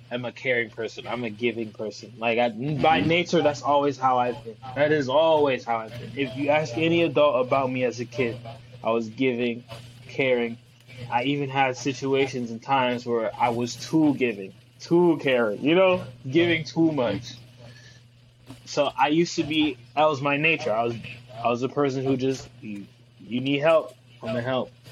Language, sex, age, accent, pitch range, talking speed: English, male, 20-39, American, 120-145 Hz, 195 wpm